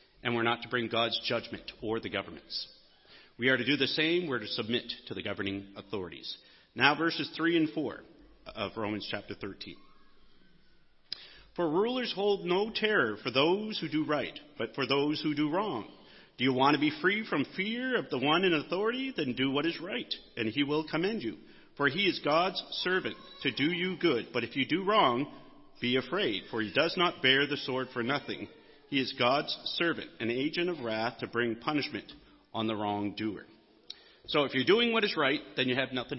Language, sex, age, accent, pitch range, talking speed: English, male, 40-59, American, 120-165 Hz, 200 wpm